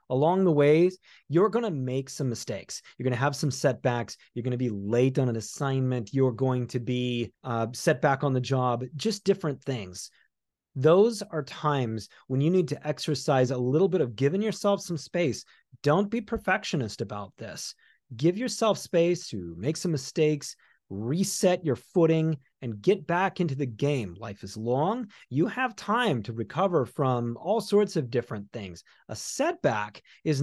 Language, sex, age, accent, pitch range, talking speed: English, male, 30-49, American, 120-180 Hz, 175 wpm